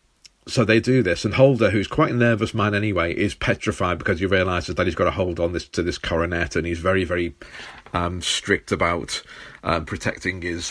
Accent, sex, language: British, male, English